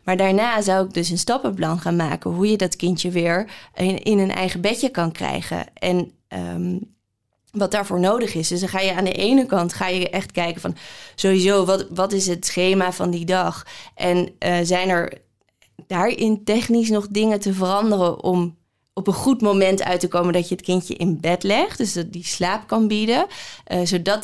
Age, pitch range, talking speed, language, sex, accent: 20-39, 175-210 Hz, 205 wpm, Dutch, female, Dutch